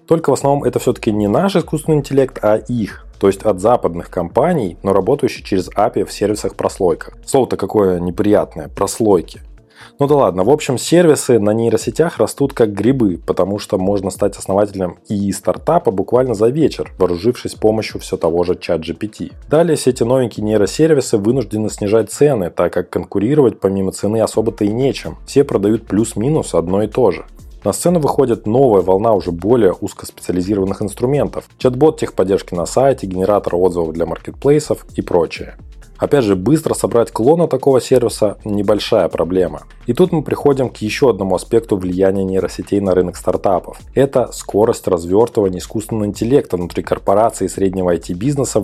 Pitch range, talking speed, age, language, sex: 95-130 Hz, 160 wpm, 20-39, Russian, male